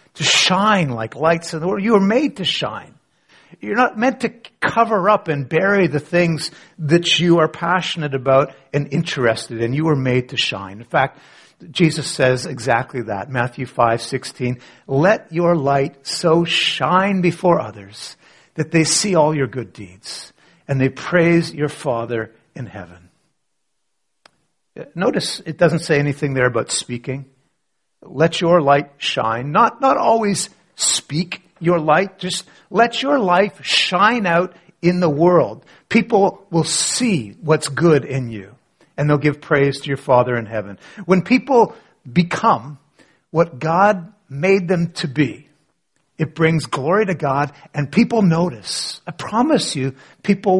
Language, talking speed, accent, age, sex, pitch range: English, 155 wpm, American, 50-69, male, 135-180 Hz